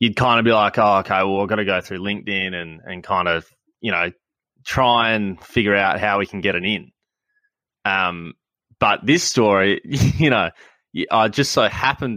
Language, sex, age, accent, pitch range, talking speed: English, male, 20-39, Australian, 100-140 Hz, 195 wpm